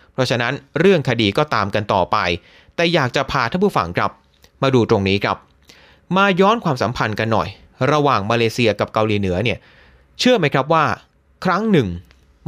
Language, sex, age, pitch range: Thai, male, 30-49, 105-170 Hz